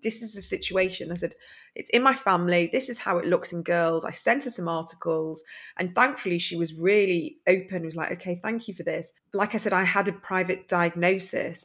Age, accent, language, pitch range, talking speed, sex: 20-39, British, English, 165-195 Hz, 230 wpm, female